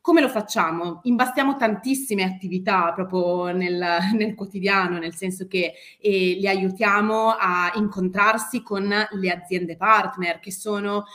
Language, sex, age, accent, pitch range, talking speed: Italian, female, 30-49, native, 180-225 Hz, 130 wpm